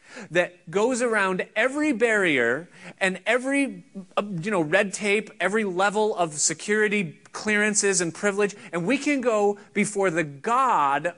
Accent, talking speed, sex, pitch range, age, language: American, 135 wpm, male, 170-220 Hz, 30-49, English